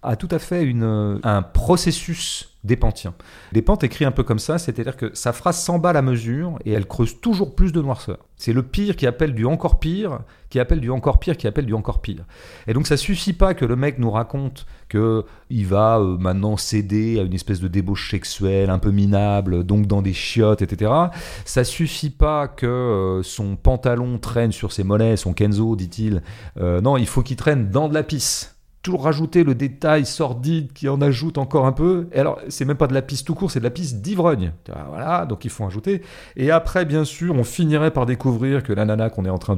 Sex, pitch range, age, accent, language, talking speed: male, 100-145 Hz, 40-59, French, French, 225 wpm